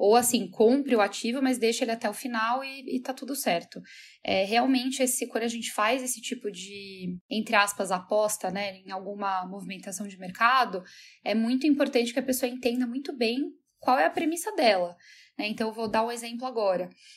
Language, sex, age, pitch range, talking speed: Portuguese, female, 10-29, 200-255 Hz, 195 wpm